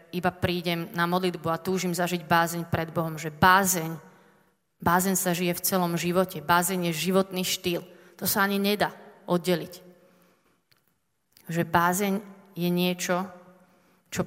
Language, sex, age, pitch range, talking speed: Slovak, female, 30-49, 170-190 Hz, 135 wpm